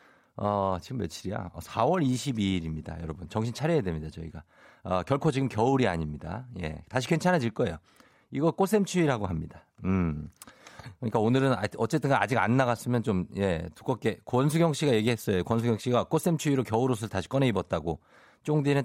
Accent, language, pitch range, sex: native, Korean, 95-160 Hz, male